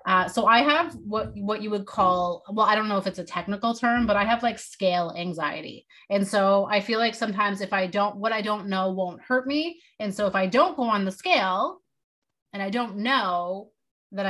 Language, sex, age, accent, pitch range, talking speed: English, female, 30-49, American, 190-225 Hz, 225 wpm